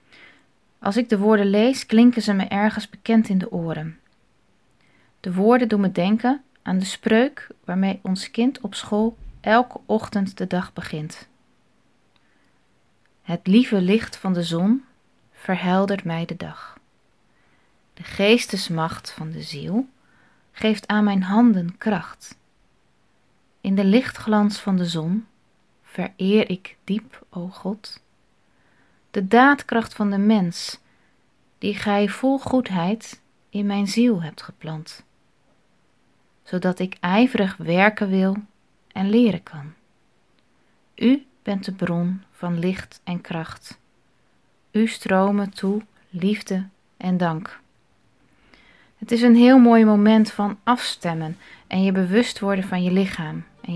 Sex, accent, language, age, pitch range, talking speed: female, Dutch, Dutch, 20-39, 180-220 Hz, 125 wpm